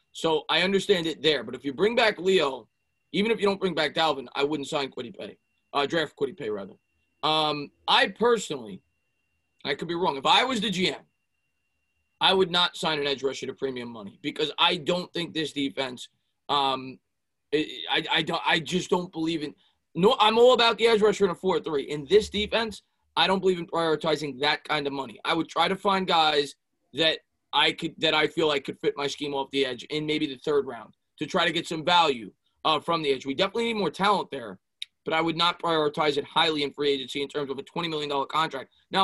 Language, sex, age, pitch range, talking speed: English, male, 20-39, 145-190 Hz, 225 wpm